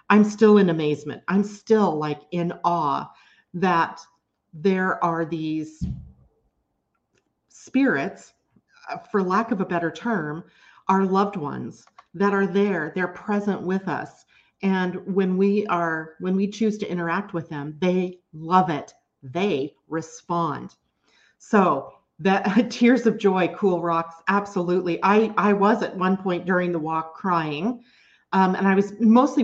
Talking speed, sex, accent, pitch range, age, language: 140 wpm, female, American, 165-200 Hz, 40-59, English